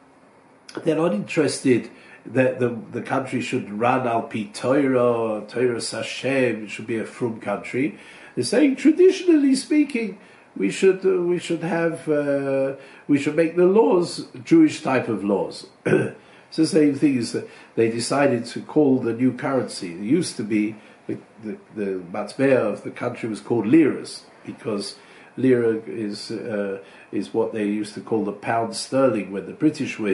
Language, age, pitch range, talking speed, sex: English, 50-69, 105-165 Hz, 165 wpm, male